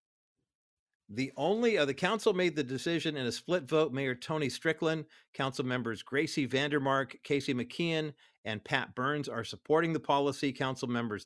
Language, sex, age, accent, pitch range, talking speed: English, male, 50-69, American, 130-160 Hz, 160 wpm